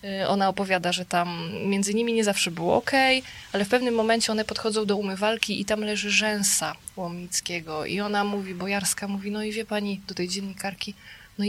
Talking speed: 185 wpm